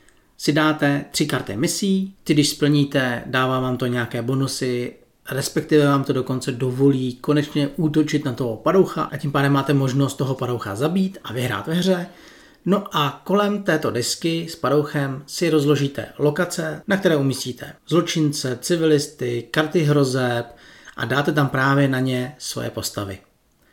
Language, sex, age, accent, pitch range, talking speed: Czech, male, 40-59, native, 130-165 Hz, 150 wpm